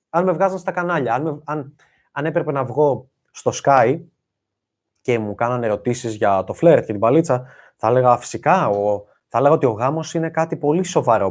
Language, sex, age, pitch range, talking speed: Greek, male, 20-39, 115-160 Hz, 170 wpm